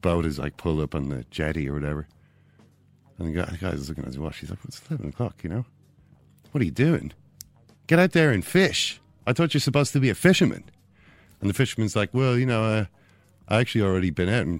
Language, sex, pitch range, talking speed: English, male, 95-135 Hz, 230 wpm